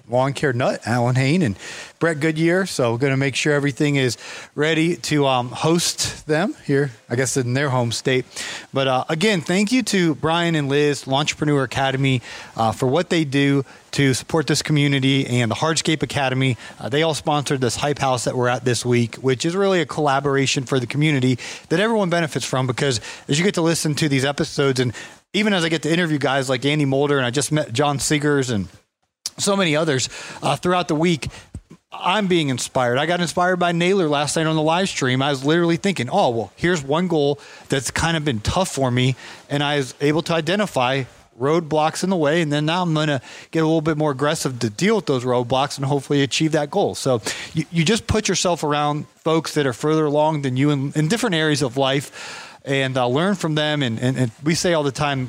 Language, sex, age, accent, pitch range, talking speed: English, male, 30-49, American, 130-160 Hz, 220 wpm